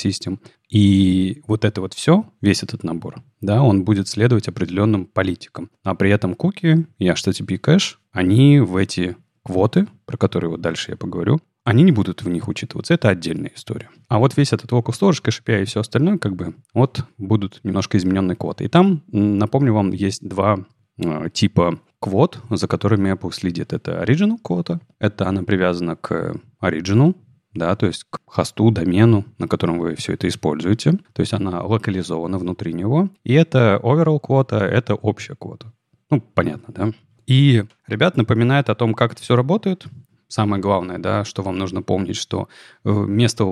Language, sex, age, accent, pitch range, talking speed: Russian, male, 30-49, native, 95-125 Hz, 170 wpm